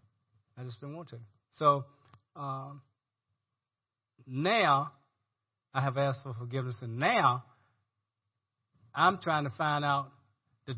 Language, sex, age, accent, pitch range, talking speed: English, male, 30-49, American, 115-155 Hz, 115 wpm